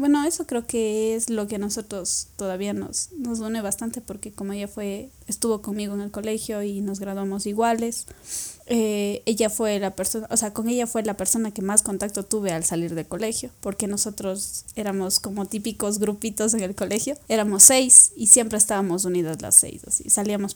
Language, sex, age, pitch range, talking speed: Spanish, female, 20-39, 200-230 Hz, 195 wpm